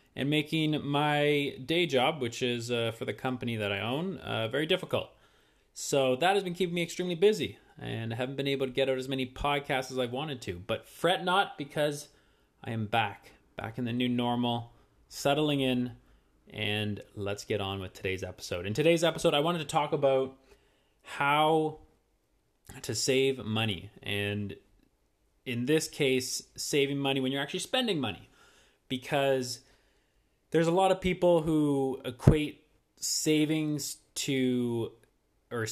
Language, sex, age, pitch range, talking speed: English, male, 20-39, 110-145 Hz, 160 wpm